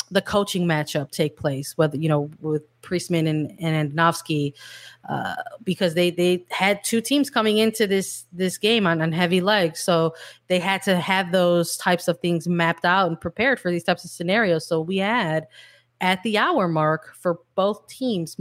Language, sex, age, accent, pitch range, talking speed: English, female, 20-39, American, 165-190 Hz, 185 wpm